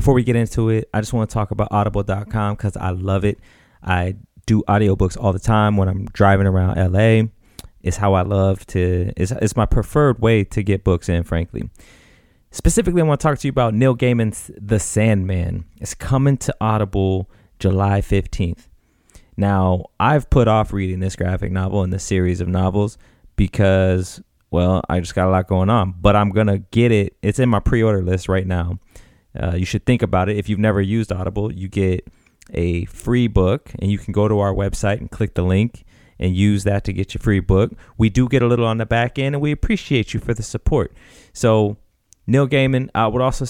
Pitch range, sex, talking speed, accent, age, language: 95-110 Hz, male, 210 wpm, American, 30-49, English